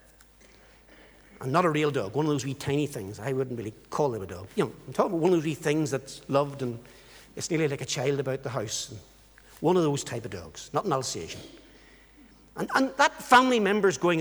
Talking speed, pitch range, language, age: 225 wpm, 120-165 Hz, English, 60-79